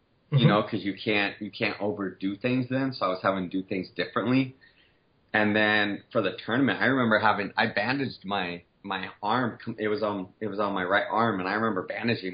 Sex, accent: male, American